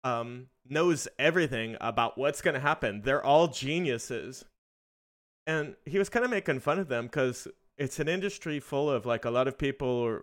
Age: 30-49